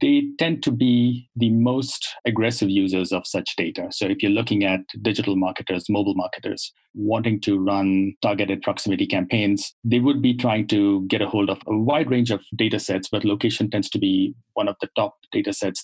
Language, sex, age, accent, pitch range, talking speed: English, male, 30-49, Indian, 100-125 Hz, 195 wpm